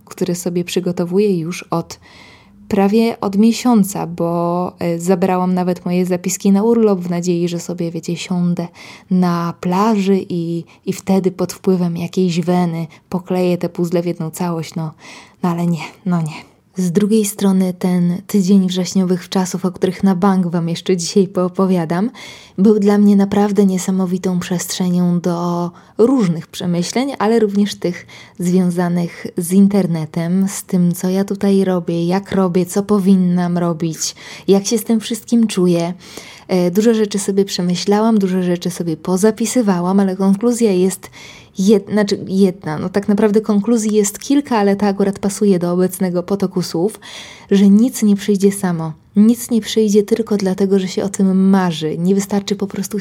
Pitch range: 175-205 Hz